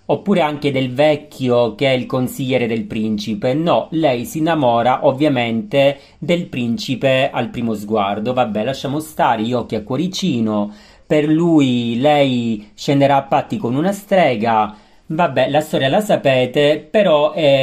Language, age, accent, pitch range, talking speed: Italian, 40-59, native, 120-155 Hz, 145 wpm